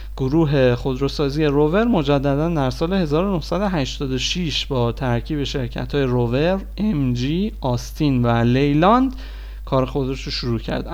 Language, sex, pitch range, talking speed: Persian, male, 130-180 Hz, 120 wpm